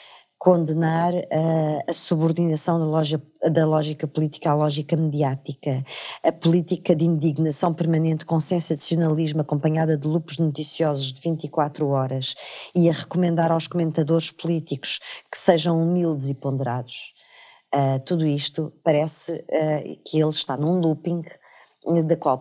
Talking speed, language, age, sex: 135 wpm, Portuguese, 20-39, female